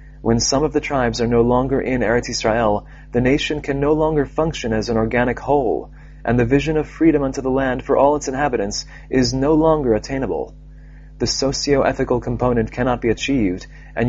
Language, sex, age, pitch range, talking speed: English, male, 30-49, 120-145 Hz, 185 wpm